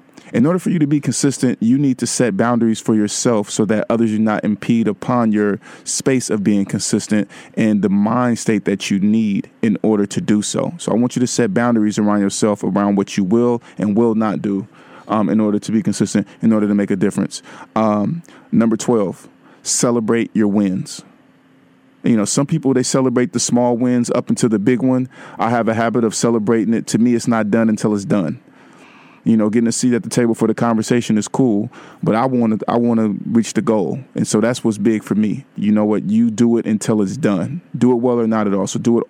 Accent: American